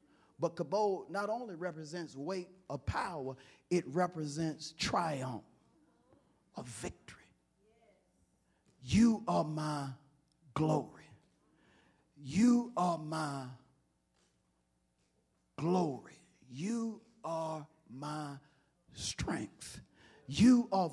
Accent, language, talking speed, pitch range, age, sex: American, English, 75 wpm, 120-170 Hz, 50-69, male